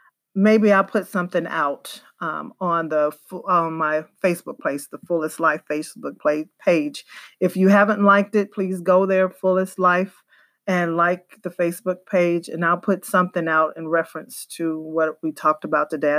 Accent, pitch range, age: American, 165-185 Hz, 40-59